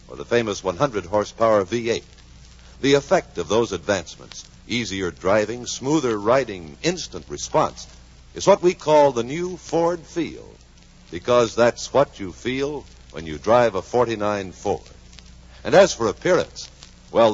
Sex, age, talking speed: male, 60-79, 140 wpm